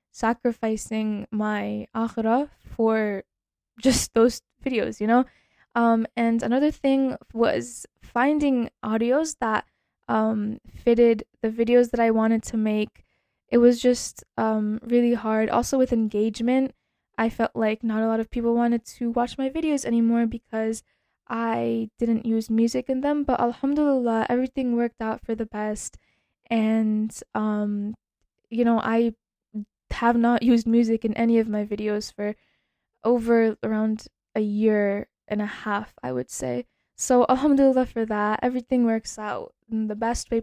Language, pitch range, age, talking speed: English, 220-245 Hz, 10-29, 150 wpm